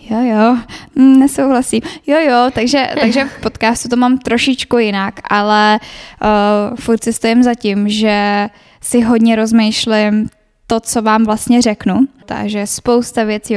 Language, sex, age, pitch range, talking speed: Czech, female, 10-29, 210-235 Hz, 135 wpm